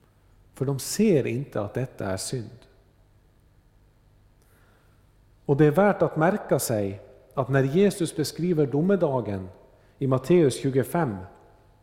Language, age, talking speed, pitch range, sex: Swedish, 50-69, 115 wpm, 105-155 Hz, male